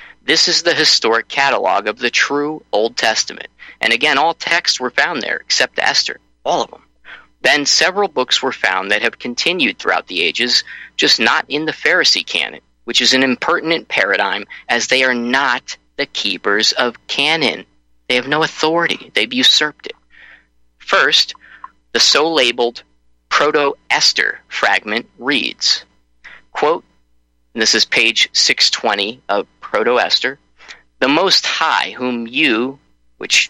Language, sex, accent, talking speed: English, male, American, 140 wpm